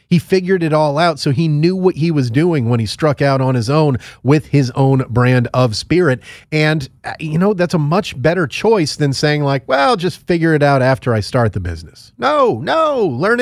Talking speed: 220 wpm